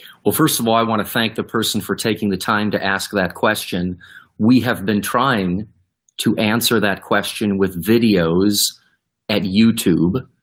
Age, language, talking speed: 30-49, English, 175 wpm